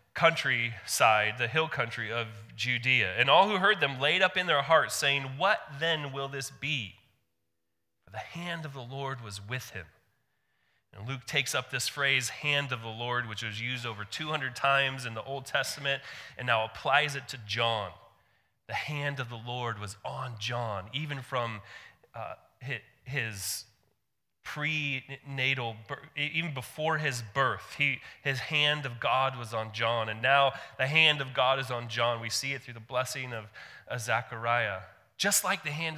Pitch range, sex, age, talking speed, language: 115-145 Hz, male, 30-49, 170 wpm, English